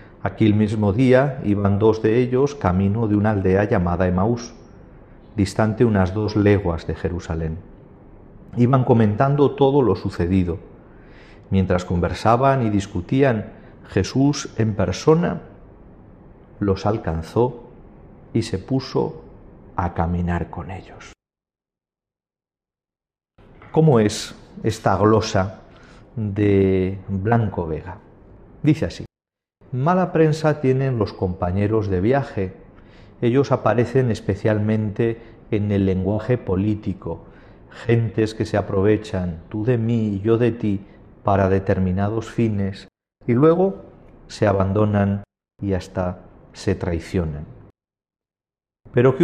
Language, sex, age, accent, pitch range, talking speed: Spanish, male, 40-59, Spanish, 95-115 Hz, 105 wpm